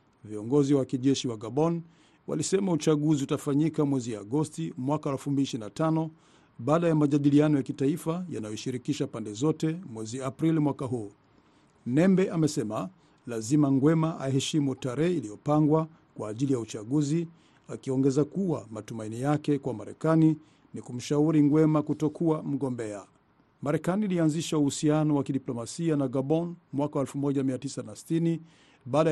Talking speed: 115 wpm